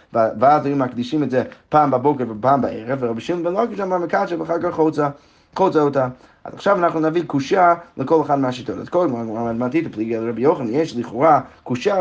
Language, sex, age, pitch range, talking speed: Hebrew, male, 30-49, 125-160 Hz, 190 wpm